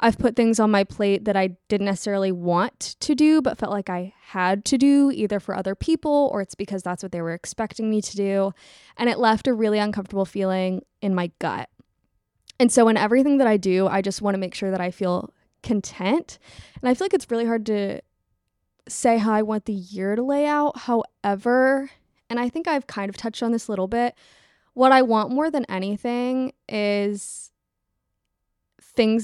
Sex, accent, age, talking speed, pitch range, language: female, American, 20-39, 205 wpm, 190-235 Hz, English